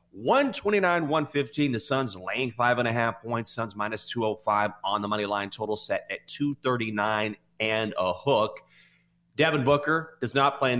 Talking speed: 165 wpm